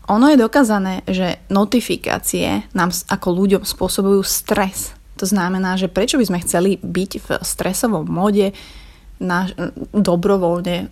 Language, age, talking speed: Slovak, 20-39, 125 wpm